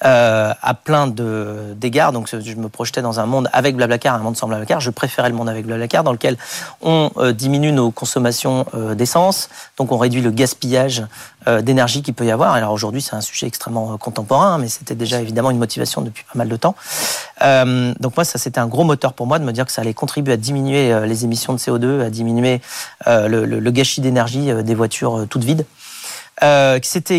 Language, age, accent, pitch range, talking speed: French, 40-59, French, 115-140 Hz, 235 wpm